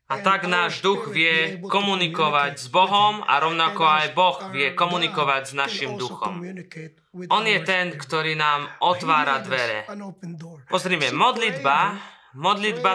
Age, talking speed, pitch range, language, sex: 20-39, 125 wpm, 160-195 Hz, Slovak, male